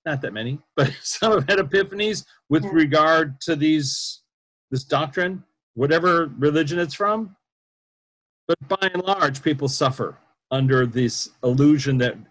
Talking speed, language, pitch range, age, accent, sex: 135 wpm, English, 135-195 Hz, 40-59, American, male